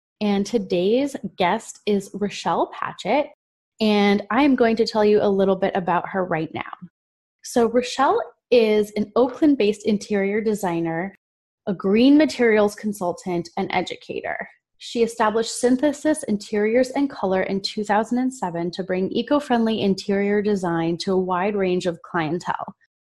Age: 20-39